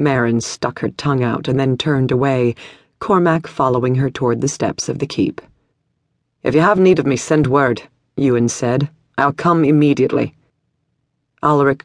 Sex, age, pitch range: female, 40-59, 125-155 Hz